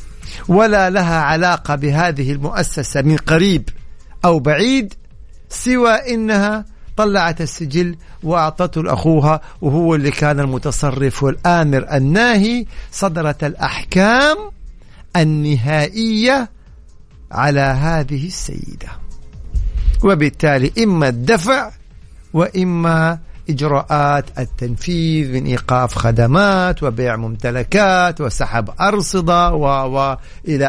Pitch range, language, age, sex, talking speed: 130-180 Hz, Arabic, 50-69, male, 80 wpm